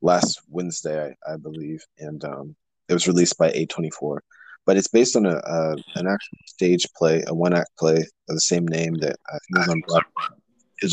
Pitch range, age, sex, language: 80-90 Hz, 30-49, male, English